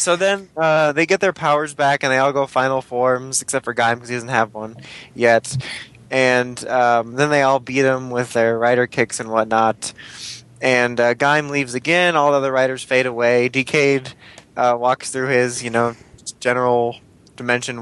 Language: English